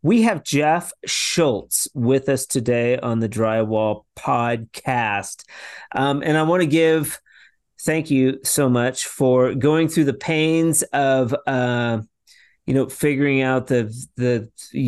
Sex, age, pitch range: male, 30-49, 115-140 Hz